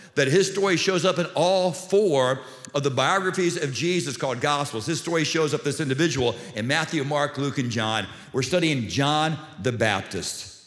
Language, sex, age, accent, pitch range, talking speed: English, male, 50-69, American, 140-180 Hz, 180 wpm